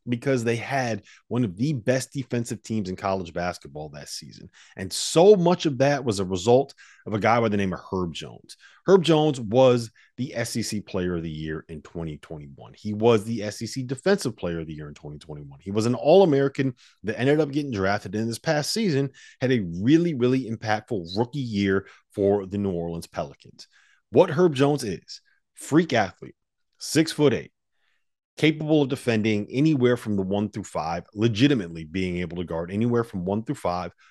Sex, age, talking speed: male, 30-49, 190 wpm